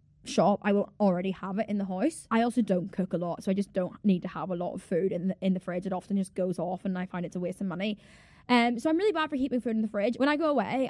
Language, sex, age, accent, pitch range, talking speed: English, female, 10-29, British, 200-275 Hz, 325 wpm